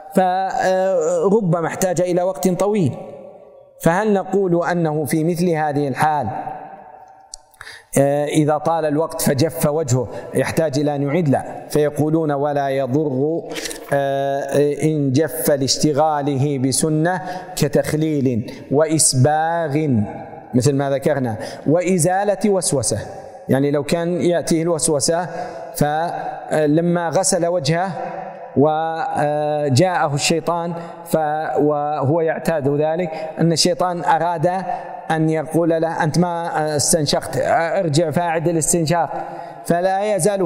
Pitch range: 150-180 Hz